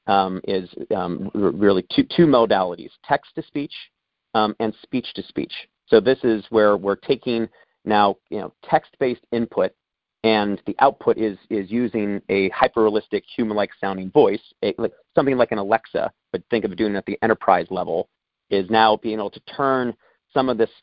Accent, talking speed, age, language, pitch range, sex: American, 165 wpm, 40-59, English, 100-120 Hz, male